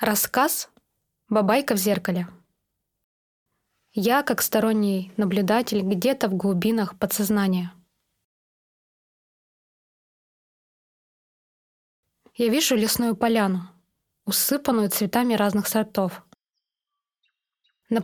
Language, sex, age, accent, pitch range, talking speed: Russian, female, 20-39, native, 195-245 Hz, 75 wpm